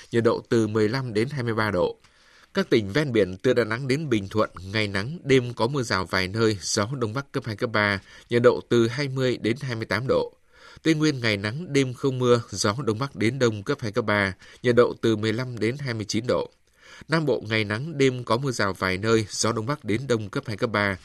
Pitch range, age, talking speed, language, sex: 105-130 Hz, 20-39, 230 wpm, Vietnamese, male